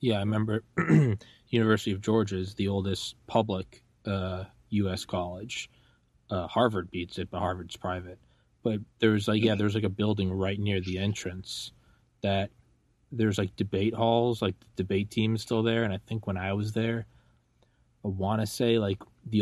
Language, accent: English, American